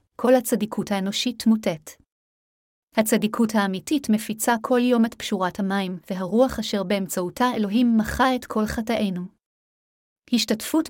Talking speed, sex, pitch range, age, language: 115 wpm, female, 195-235 Hz, 30-49, Hebrew